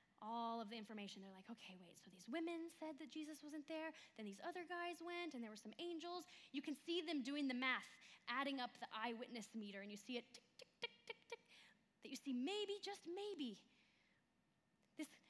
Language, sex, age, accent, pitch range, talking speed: English, female, 10-29, American, 215-280 Hz, 210 wpm